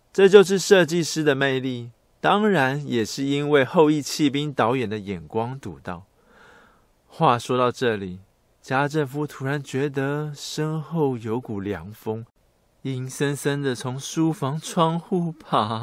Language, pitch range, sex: Chinese, 105-150 Hz, male